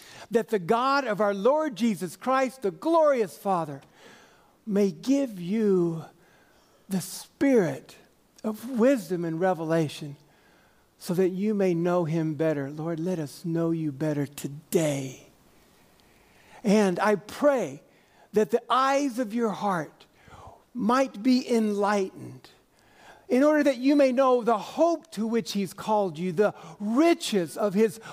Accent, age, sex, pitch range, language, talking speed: American, 60-79, male, 180-255 Hz, English, 135 wpm